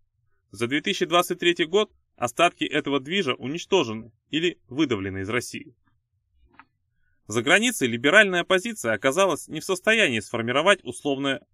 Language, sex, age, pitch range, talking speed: Russian, male, 20-39, 115-180 Hz, 110 wpm